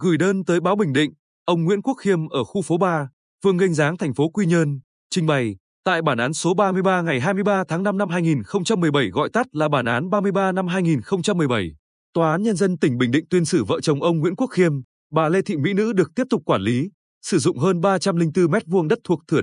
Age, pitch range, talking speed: 20-39, 150-195 Hz, 235 wpm